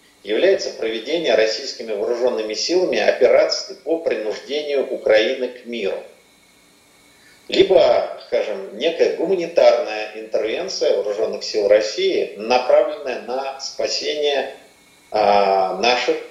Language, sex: Russian, male